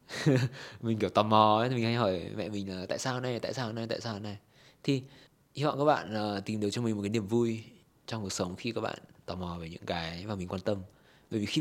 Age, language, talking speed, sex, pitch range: 20-39, Vietnamese, 260 wpm, male, 105-140 Hz